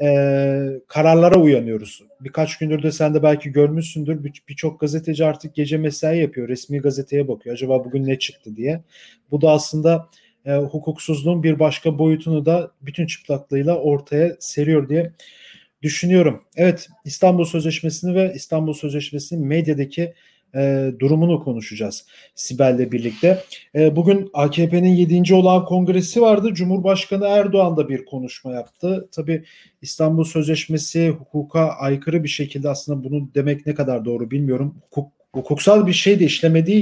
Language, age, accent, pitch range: German, 40-59, Turkish, 145-180 Hz